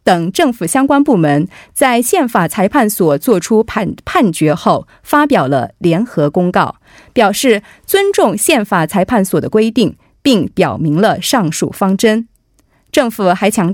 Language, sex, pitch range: Korean, female, 180-265 Hz